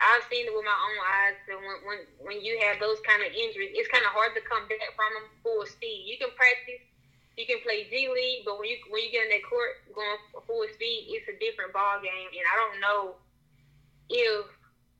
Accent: American